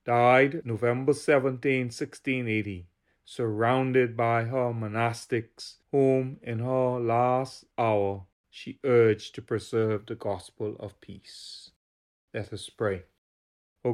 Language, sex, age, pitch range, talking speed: English, male, 40-59, 105-125 Hz, 110 wpm